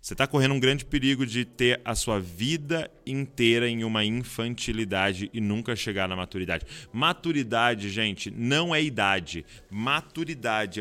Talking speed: 145 wpm